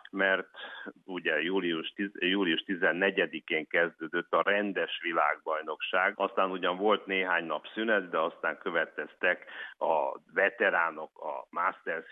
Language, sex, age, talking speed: Hungarian, male, 60-79, 105 wpm